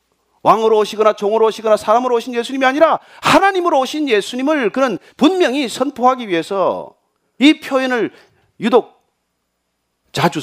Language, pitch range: Korean, 160-260 Hz